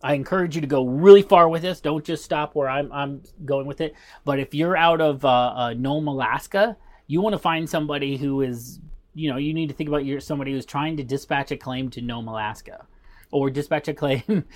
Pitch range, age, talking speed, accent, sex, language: 135-165 Hz, 30-49, 225 wpm, American, male, English